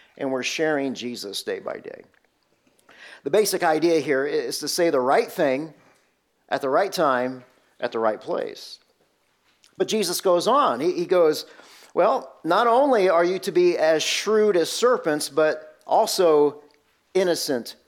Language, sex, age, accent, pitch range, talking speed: English, male, 50-69, American, 130-190 Hz, 150 wpm